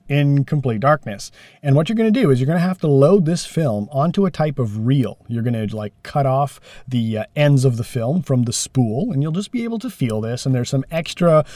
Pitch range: 120-170 Hz